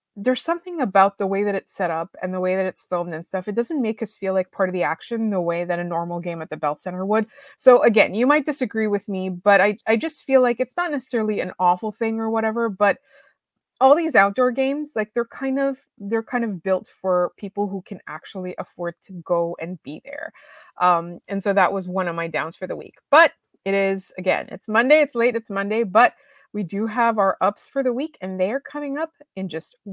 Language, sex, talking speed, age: English, female, 240 wpm, 20-39